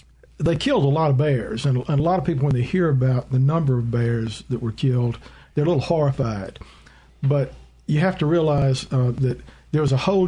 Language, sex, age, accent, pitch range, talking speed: English, male, 50-69, American, 125-150 Hz, 220 wpm